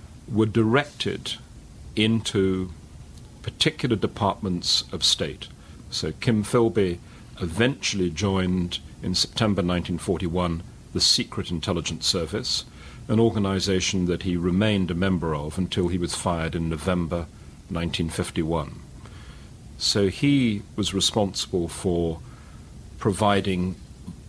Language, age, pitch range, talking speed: English, 40-59, 85-105 Hz, 100 wpm